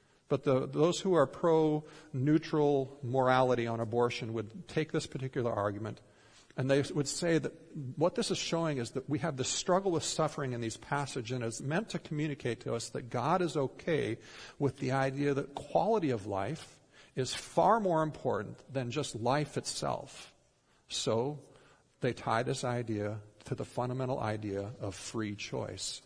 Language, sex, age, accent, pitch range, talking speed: English, male, 50-69, American, 125-160 Hz, 165 wpm